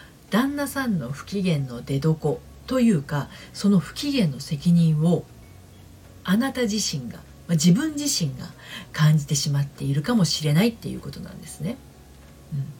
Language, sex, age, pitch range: Japanese, female, 40-59, 140-200 Hz